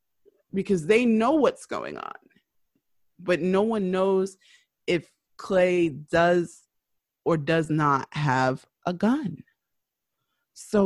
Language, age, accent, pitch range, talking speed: English, 20-39, American, 170-215 Hz, 110 wpm